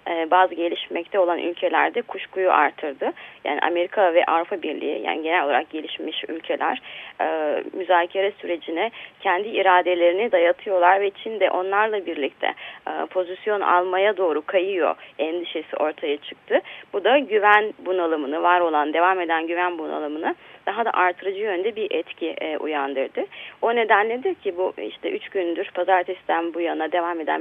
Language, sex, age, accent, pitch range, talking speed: Turkish, female, 30-49, native, 165-200 Hz, 135 wpm